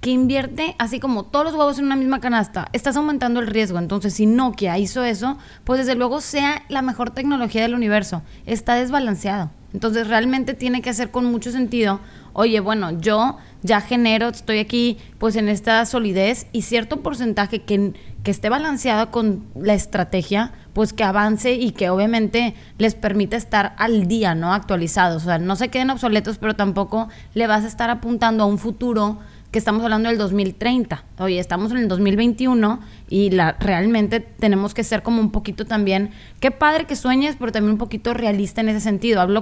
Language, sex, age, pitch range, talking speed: Spanish, female, 20-39, 205-245 Hz, 185 wpm